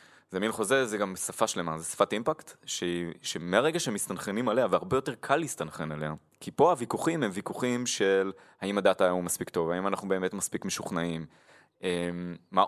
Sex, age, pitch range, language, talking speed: male, 20-39, 90-120 Hz, Hebrew, 170 wpm